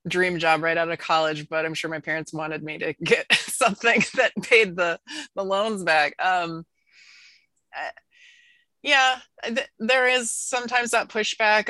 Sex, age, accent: female, 20-39, American